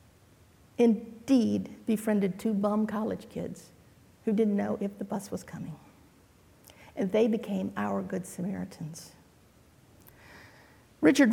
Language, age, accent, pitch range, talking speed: English, 50-69, American, 195-250 Hz, 110 wpm